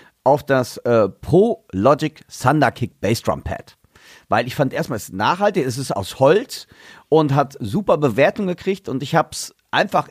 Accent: German